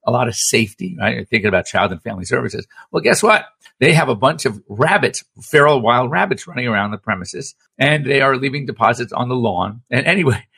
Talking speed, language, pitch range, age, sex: 215 wpm, English, 120-145 Hz, 50-69, male